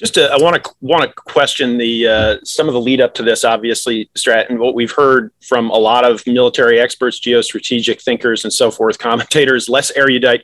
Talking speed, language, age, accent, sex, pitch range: 215 wpm, English, 40-59, American, male, 120-145 Hz